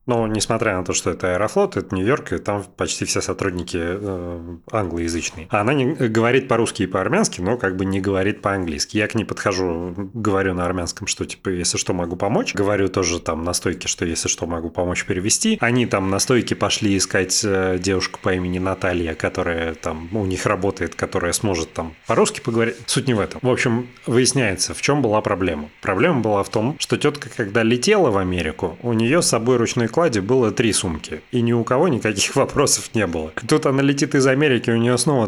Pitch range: 95-120 Hz